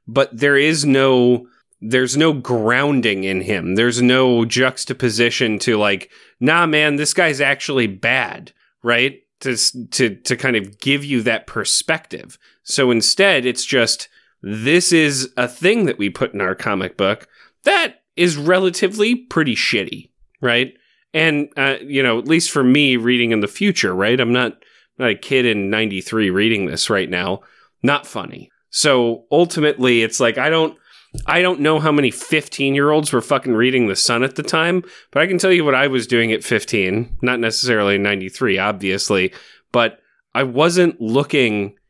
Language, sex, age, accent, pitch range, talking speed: English, male, 30-49, American, 115-145 Hz, 170 wpm